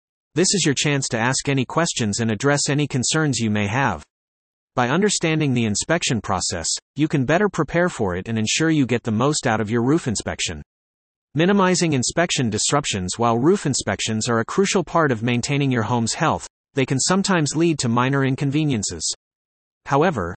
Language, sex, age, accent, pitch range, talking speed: English, male, 30-49, American, 115-160 Hz, 175 wpm